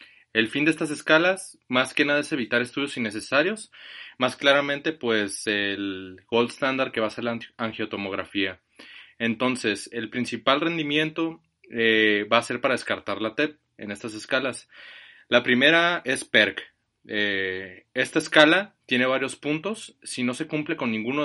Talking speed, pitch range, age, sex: 155 wpm, 110-140 Hz, 30-49, male